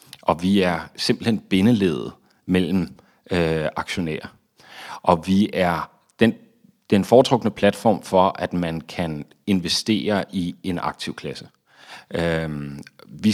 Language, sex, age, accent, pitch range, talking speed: Danish, male, 40-59, native, 85-105 Hz, 110 wpm